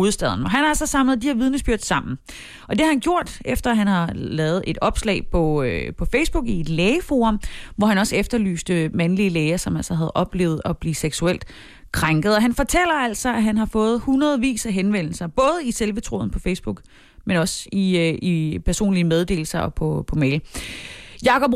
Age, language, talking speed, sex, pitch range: 30-49, Danish, 190 wpm, female, 175-235 Hz